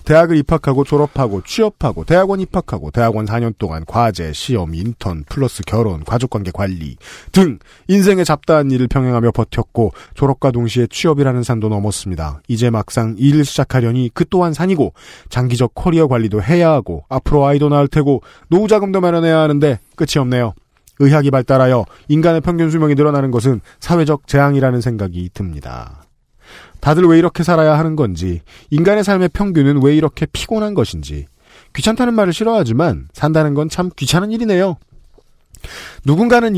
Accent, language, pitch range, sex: native, Korean, 115-160 Hz, male